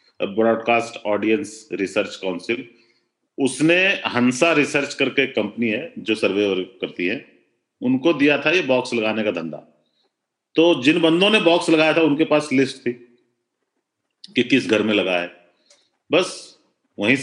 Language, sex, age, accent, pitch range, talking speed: Hindi, male, 40-59, native, 105-155 Hz, 140 wpm